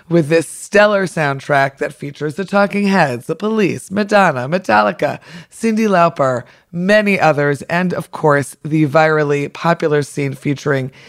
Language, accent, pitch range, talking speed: English, American, 145-185 Hz, 135 wpm